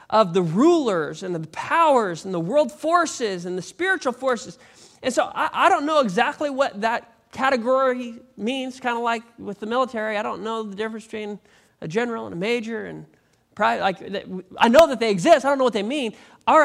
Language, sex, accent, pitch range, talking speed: English, male, American, 190-265 Hz, 205 wpm